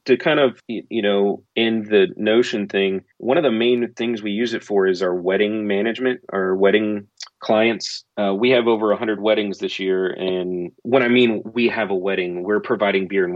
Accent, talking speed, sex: American, 205 wpm, male